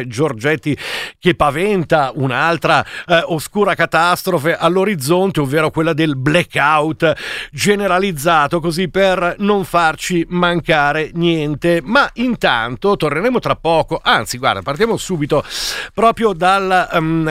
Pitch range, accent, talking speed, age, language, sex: 150-190 Hz, native, 110 wpm, 50-69, Italian, male